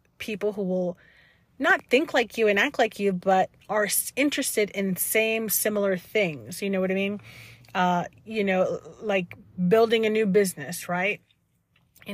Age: 30-49